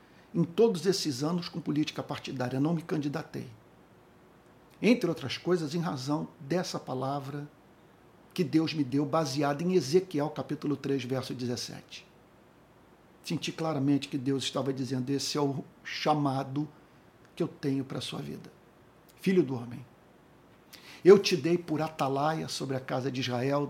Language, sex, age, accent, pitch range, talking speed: Portuguese, male, 50-69, Brazilian, 135-165 Hz, 145 wpm